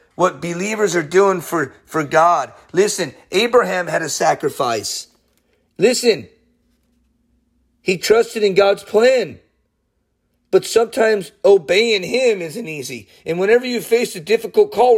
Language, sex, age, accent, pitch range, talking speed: English, male, 30-49, American, 180-245 Hz, 125 wpm